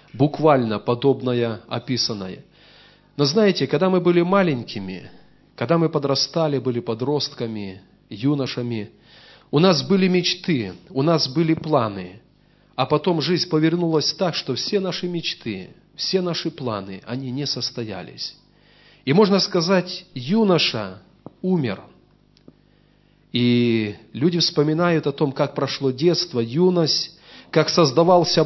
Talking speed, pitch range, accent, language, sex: 115 wpm, 130-175 Hz, native, Russian, male